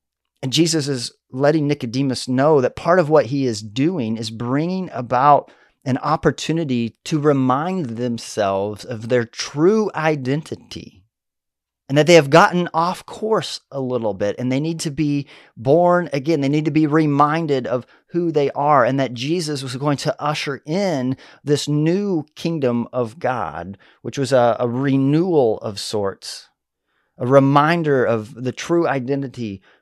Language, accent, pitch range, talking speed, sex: English, American, 115-150 Hz, 155 wpm, male